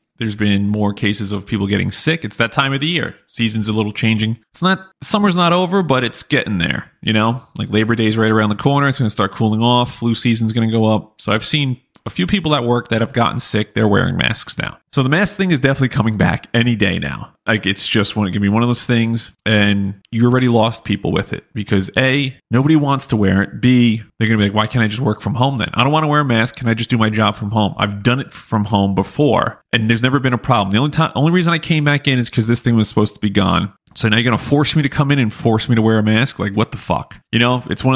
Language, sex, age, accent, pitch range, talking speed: English, male, 30-49, American, 110-135 Hz, 290 wpm